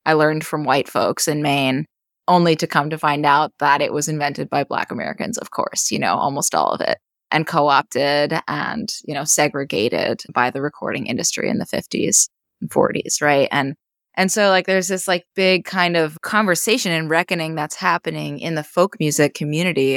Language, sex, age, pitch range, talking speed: English, female, 20-39, 150-185 Hz, 190 wpm